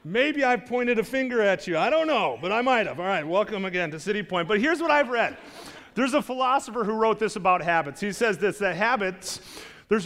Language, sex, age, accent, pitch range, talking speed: English, male, 30-49, American, 190-245 Hz, 240 wpm